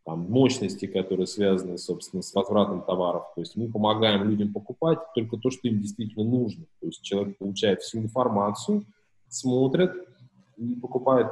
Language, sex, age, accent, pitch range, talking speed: Russian, male, 20-39, native, 100-120 Hz, 155 wpm